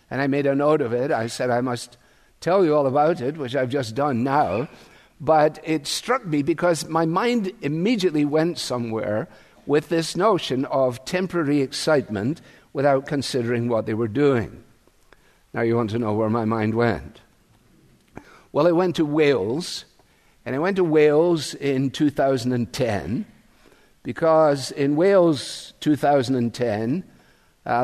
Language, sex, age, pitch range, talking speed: English, male, 50-69, 120-155 Hz, 145 wpm